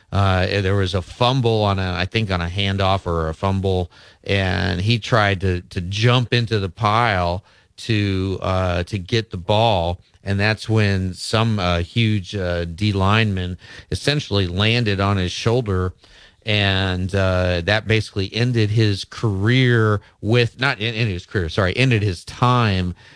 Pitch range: 90-105 Hz